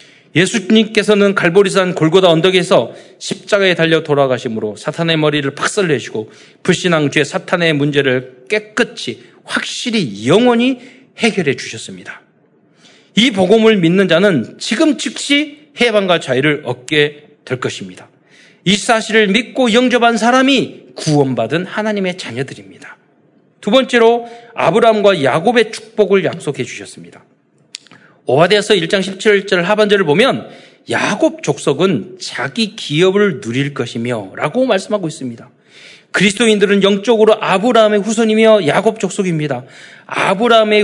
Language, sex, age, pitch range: Korean, male, 40-59, 165-220 Hz